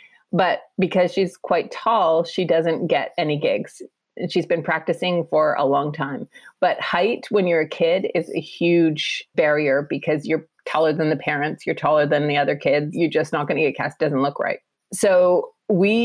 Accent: American